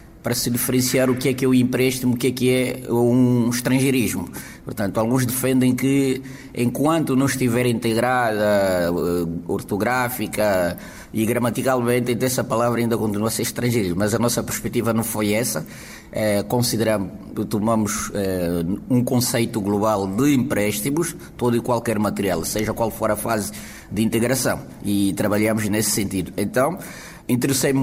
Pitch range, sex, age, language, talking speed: 110-130 Hz, male, 20-39, Portuguese, 140 wpm